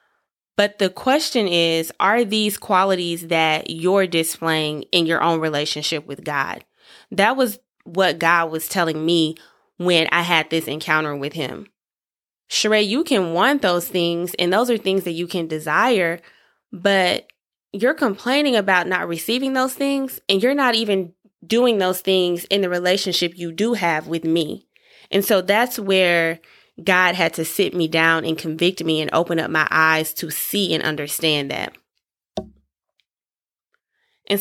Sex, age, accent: female, 20-39, American